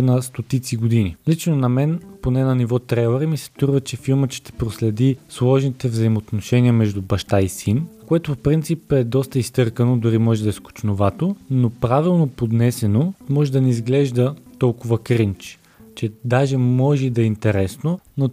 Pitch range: 115-135 Hz